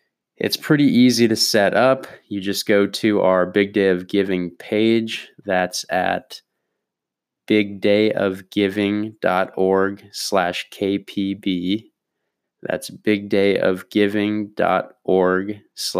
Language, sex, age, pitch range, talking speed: English, male, 20-39, 95-105 Hz, 85 wpm